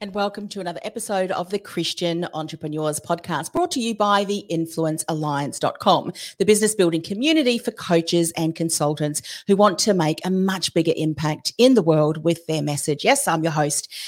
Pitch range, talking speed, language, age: 160-205 Hz, 180 wpm, English, 40-59